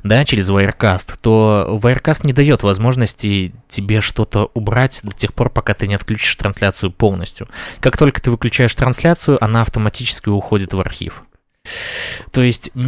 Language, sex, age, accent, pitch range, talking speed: Russian, male, 20-39, native, 95-120 Hz, 150 wpm